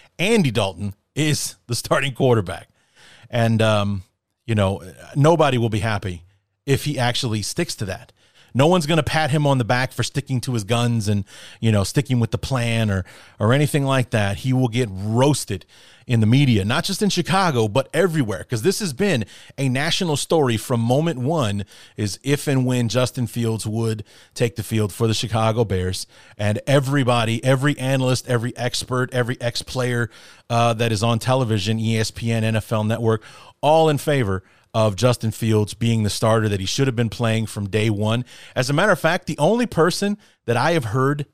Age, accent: 30-49, American